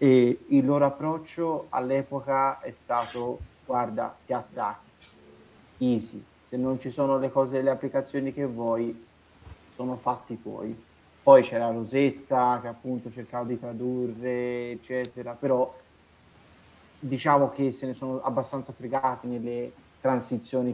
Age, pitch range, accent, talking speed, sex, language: 30-49, 115-130 Hz, native, 125 wpm, male, Italian